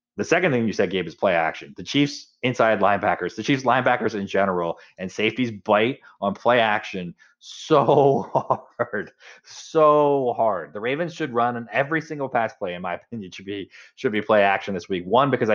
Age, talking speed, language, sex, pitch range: 20-39, 195 wpm, English, male, 90-115 Hz